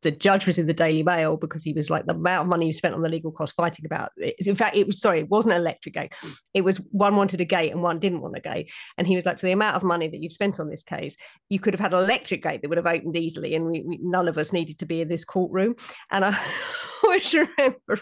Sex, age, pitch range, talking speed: female, 30-49, 165-200 Hz, 295 wpm